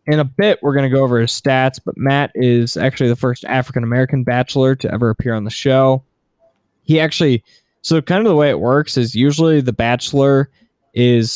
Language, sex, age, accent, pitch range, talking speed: English, male, 20-39, American, 115-135 Hz, 205 wpm